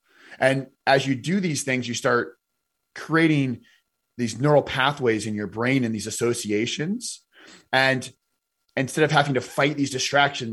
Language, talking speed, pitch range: English, 150 wpm, 115-145 Hz